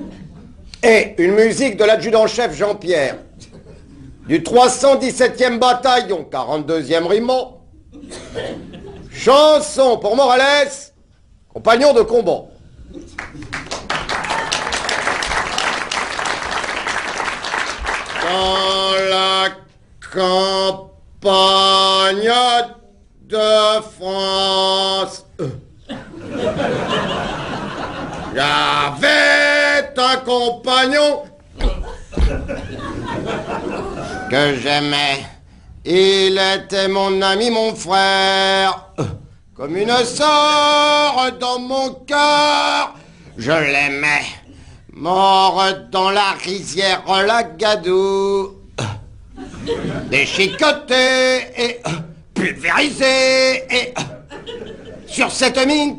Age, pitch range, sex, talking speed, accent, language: 50-69, 190-260 Hz, male, 60 wpm, French, French